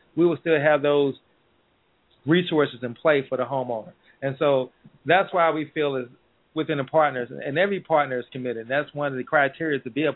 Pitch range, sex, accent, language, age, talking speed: 125-145 Hz, male, American, English, 30-49, 205 wpm